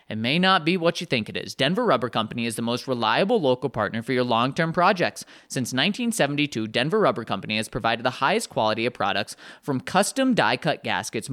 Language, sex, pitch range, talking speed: English, male, 120-190 Hz, 200 wpm